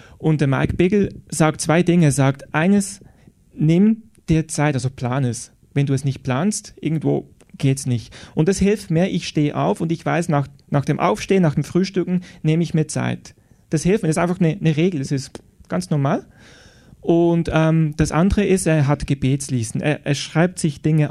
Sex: male